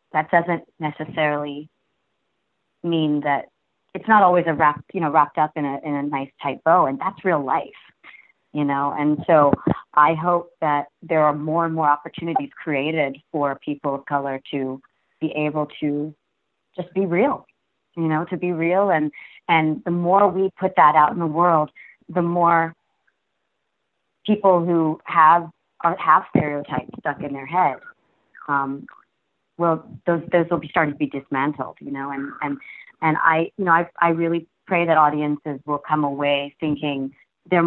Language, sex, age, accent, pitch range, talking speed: English, female, 30-49, American, 145-170 Hz, 170 wpm